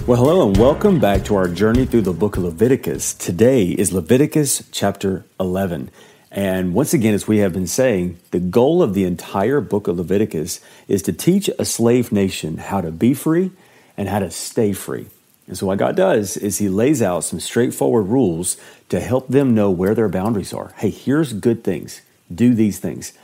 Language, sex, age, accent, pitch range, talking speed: English, male, 40-59, American, 100-130 Hz, 195 wpm